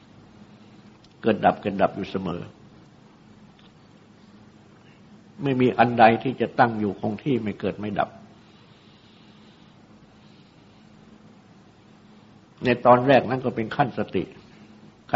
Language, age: Thai, 60-79